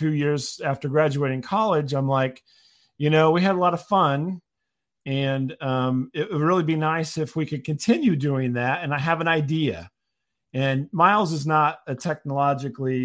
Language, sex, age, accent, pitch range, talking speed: English, male, 40-59, American, 125-150 Hz, 180 wpm